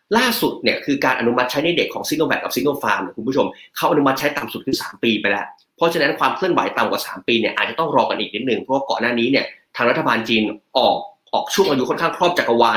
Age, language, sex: 20-39, Thai, male